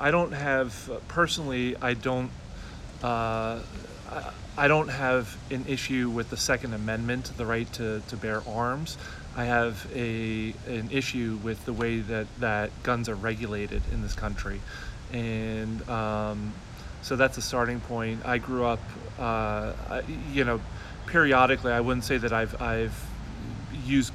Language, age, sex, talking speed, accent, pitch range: English, 30-49, male, 145 wpm, American, 105-120 Hz